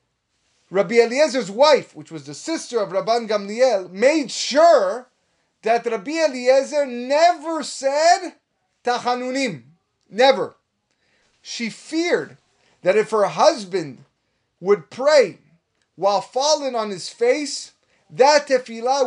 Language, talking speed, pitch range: English, 105 wpm, 185-265 Hz